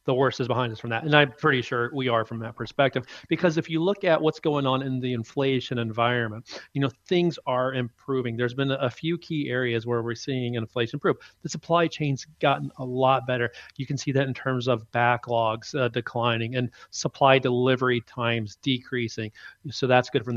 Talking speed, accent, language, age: 205 wpm, American, English, 40-59